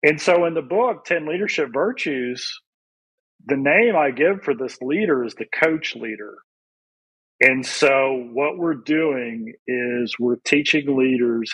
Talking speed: 145 wpm